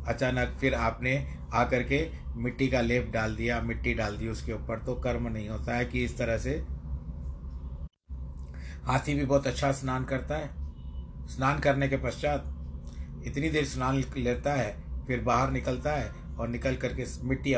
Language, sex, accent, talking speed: Hindi, male, native, 165 wpm